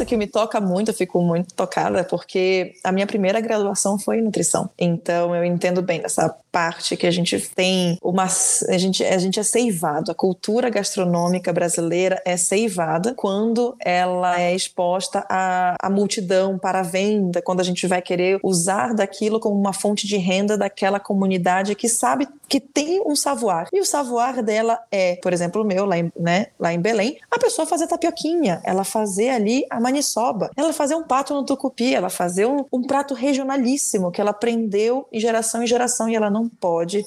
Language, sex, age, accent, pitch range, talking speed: Portuguese, female, 20-39, Brazilian, 180-225 Hz, 190 wpm